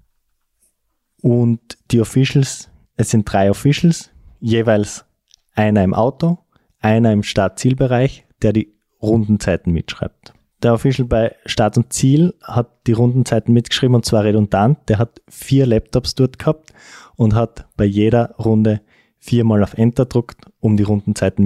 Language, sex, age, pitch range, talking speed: German, male, 20-39, 100-120 Hz, 140 wpm